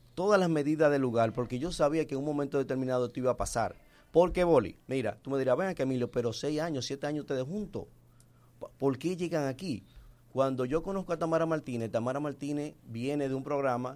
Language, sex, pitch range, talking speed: Spanish, male, 110-135 Hz, 210 wpm